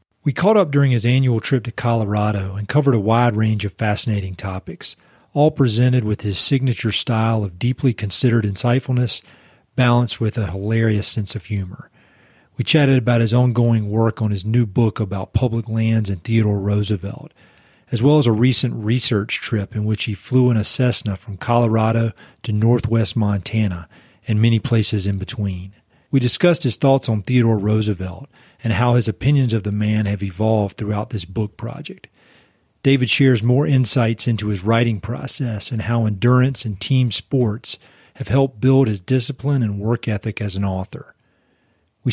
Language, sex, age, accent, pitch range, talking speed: English, male, 40-59, American, 105-125 Hz, 170 wpm